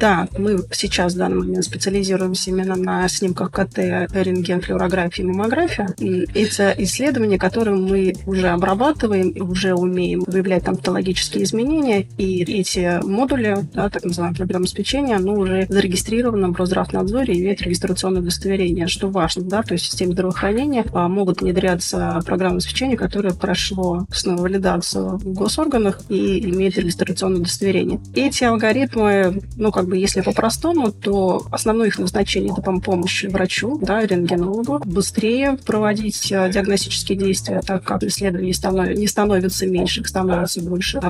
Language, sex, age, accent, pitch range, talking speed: Russian, female, 20-39, native, 180-205 Hz, 135 wpm